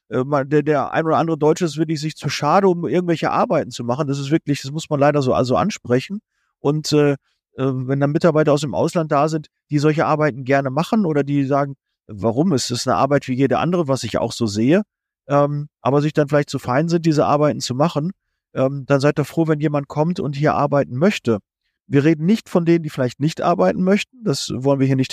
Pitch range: 135-165 Hz